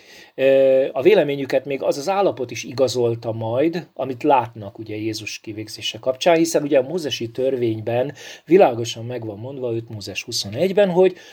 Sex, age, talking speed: male, 40-59, 150 wpm